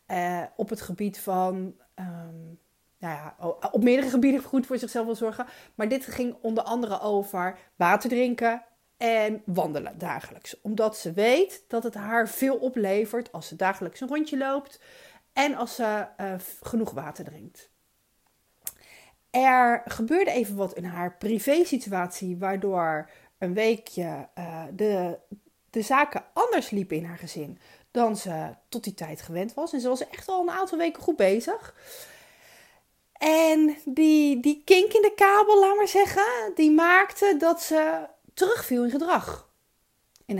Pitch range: 195-295 Hz